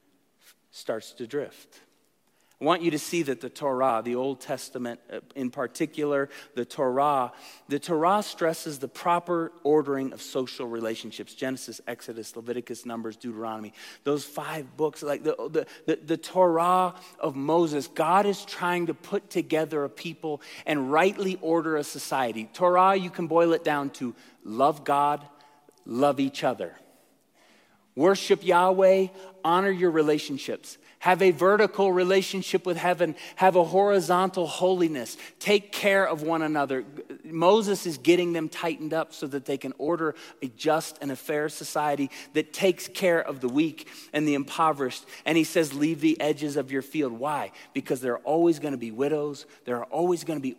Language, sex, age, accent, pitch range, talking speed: English, male, 30-49, American, 140-180 Hz, 165 wpm